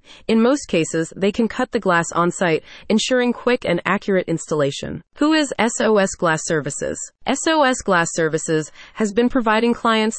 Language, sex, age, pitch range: English, female, 30-49, 170-235 Hz